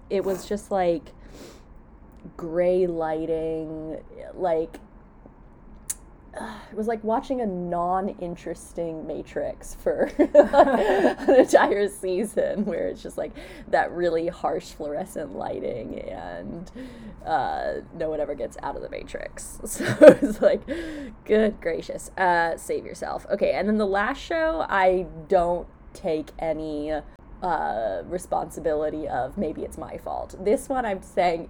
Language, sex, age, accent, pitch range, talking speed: English, female, 20-39, American, 165-255 Hz, 130 wpm